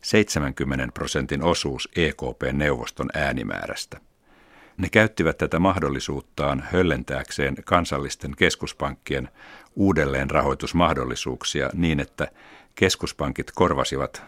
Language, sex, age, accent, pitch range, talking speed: Finnish, male, 60-79, native, 70-95 Hz, 70 wpm